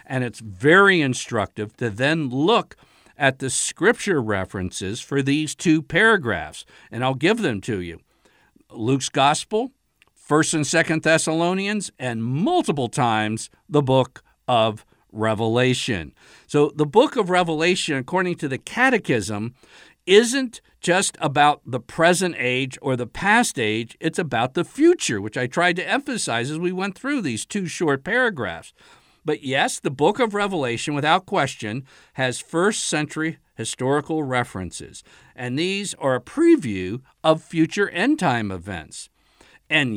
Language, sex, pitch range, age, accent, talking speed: English, male, 125-180 Hz, 50-69, American, 140 wpm